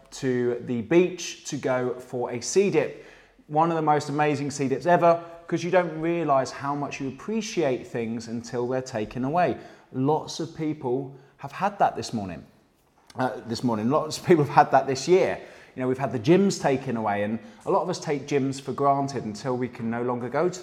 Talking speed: 210 wpm